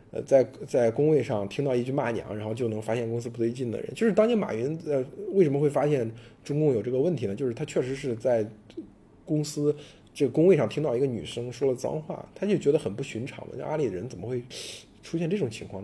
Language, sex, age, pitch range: Chinese, male, 20-39, 115-145 Hz